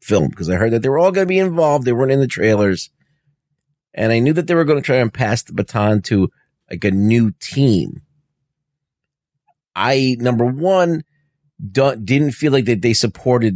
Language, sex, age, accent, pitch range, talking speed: English, male, 30-49, American, 105-140 Hz, 200 wpm